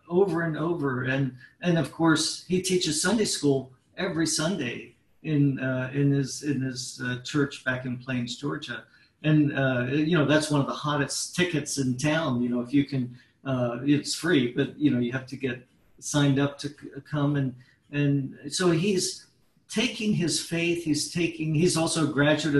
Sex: male